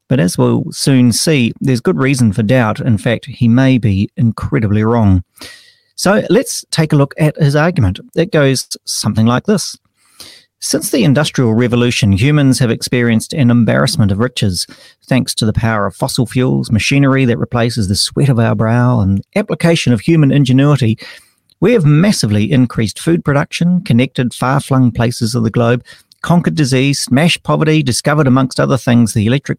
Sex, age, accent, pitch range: male, 40-59, Australian, 115-150 Hz